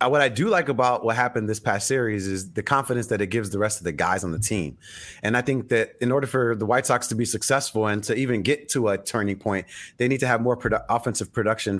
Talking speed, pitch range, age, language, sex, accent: 265 wpm, 115-145 Hz, 30-49, English, male, American